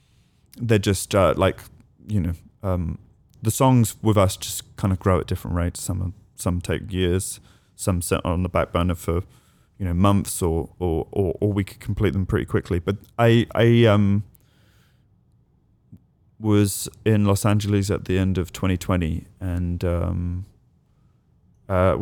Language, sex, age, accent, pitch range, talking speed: English, male, 30-49, British, 90-110 Hz, 160 wpm